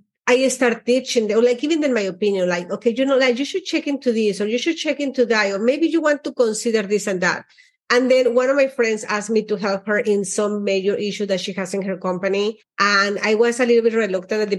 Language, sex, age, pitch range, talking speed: English, female, 40-59, 195-235 Hz, 265 wpm